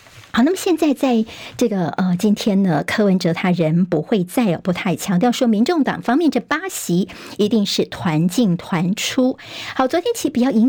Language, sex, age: Chinese, male, 50-69